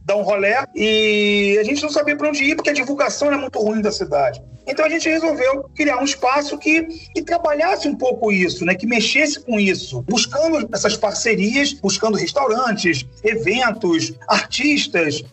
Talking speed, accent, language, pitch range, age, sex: 170 wpm, Brazilian, Portuguese, 205-290 Hz, 40-59, male